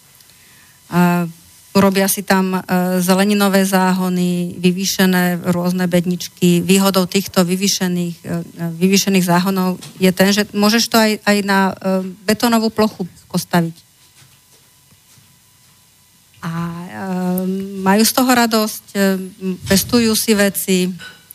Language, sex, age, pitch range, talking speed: Slovak, female, 40-59, 165-195 Hz, 90 wpm